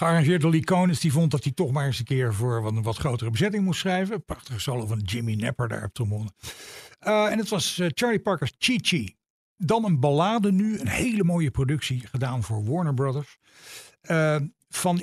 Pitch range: 120-165 Hz